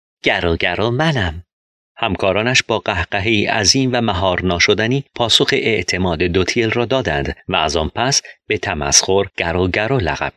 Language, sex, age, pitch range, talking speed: Persian, male, 40-59, 90-125 Hz, 125 wpm